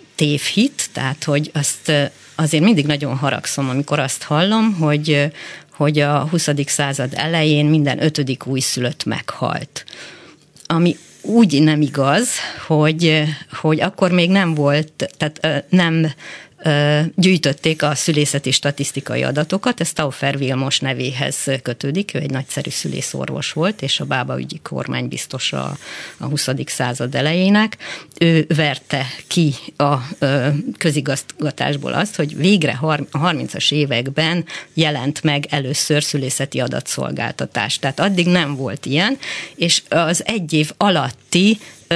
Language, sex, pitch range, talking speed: Hungarian, female, 140-170 Hz, 120 wpm